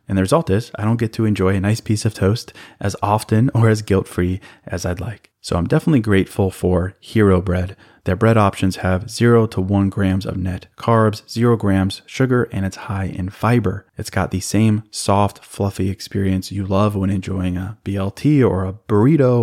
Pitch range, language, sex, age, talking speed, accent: 95-110 Hz, English, male, 20-39, 195 wpm, American